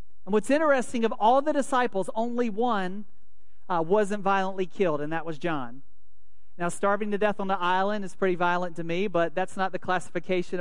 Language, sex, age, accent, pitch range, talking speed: English, male, 40-59, American, 155-195 Hz, 190 wpm